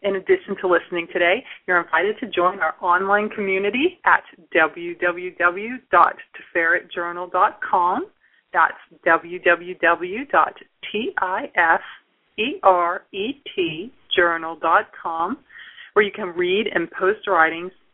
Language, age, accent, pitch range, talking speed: English, 40-59, American, 175-215 Hz, 75 wpm